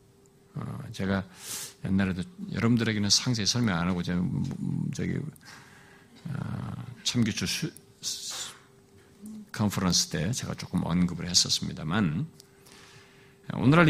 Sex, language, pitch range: male, Korean, 110-180 Hz